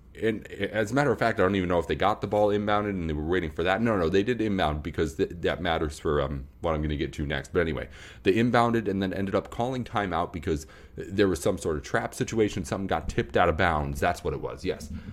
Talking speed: 270 wpm